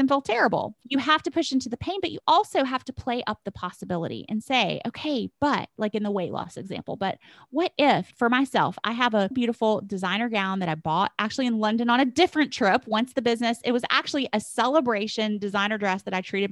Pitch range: 180-235 Hz